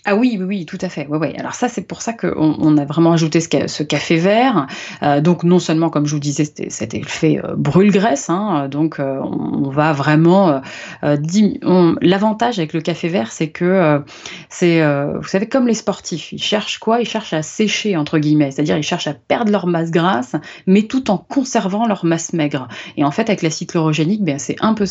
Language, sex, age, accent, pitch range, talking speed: French, female, 30-49, French, 150-195 Hz, 225 wpm